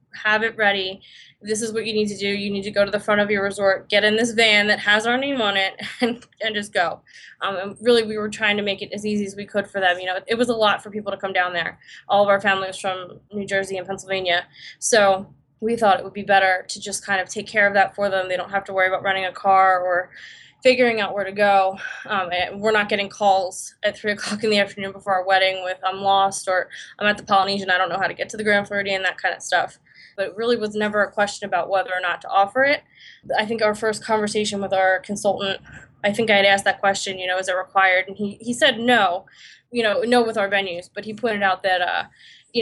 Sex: female